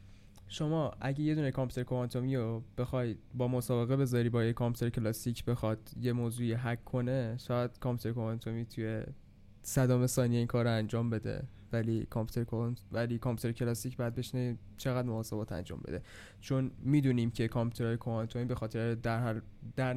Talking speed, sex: 155 wpm, male